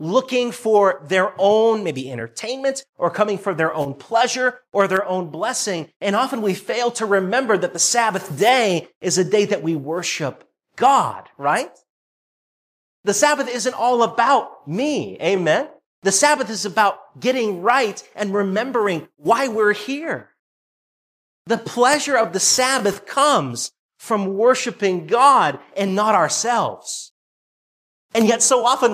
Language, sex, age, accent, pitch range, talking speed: English, male, 30-49, American, 150-230 Hz, 140 wpm